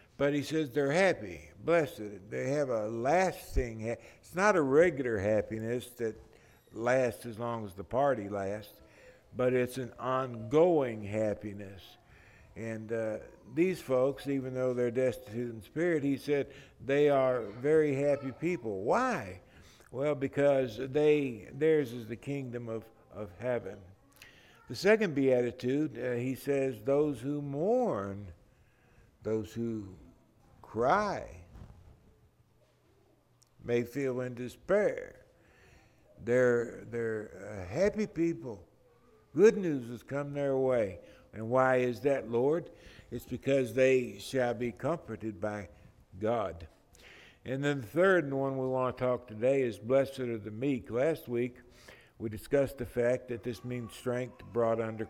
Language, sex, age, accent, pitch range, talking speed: English, male, 60-79, American, 110-140 Hz, 135 wpm